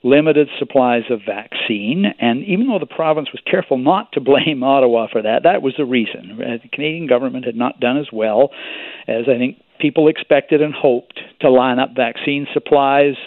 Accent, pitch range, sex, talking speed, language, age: American, 130-175 Hz, male, 185 wpm, English, 50-69